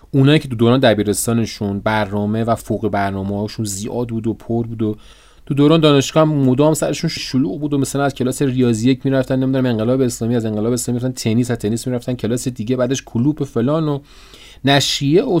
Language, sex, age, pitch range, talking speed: Persian, male, 30-49, 100-130 Hz, 205 wpm